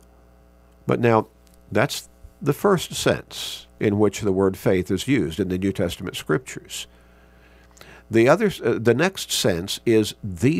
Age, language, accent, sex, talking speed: 50-69, English, American, male, 135 wpm